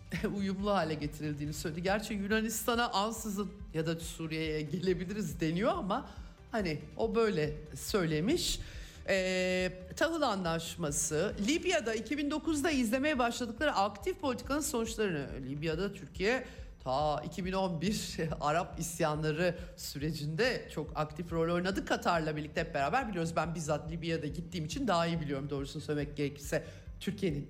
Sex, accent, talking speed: male, native, 120 wpm